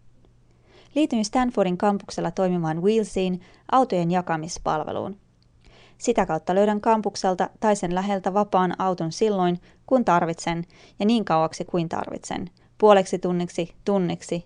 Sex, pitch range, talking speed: female, 165-205 Hz, 110 wpm